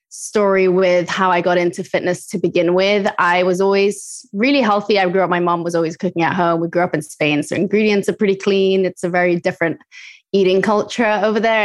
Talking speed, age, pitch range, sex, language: 220 wpm, 20-39, 180-205 Hz, female, English